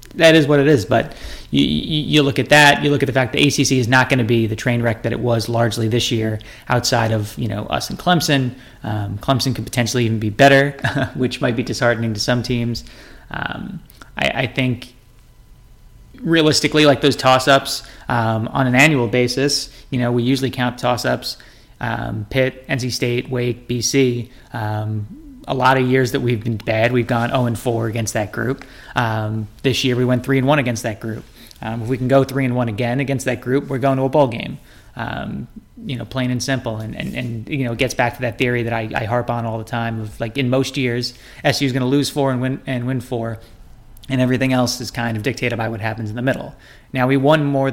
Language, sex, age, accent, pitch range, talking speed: English, male, 20-39, American, 115-135 Hz, 230 wpm